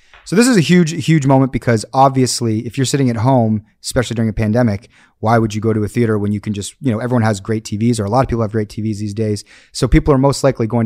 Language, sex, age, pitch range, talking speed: English, male, 30-49, 105-130 Hz, 280 wpm